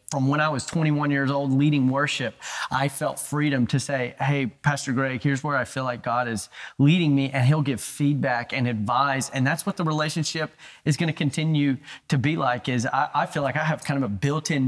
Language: English